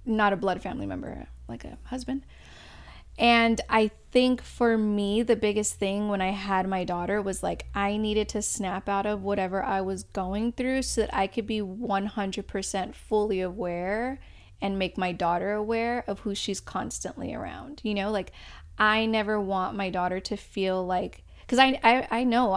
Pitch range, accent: 190-220 Hz, American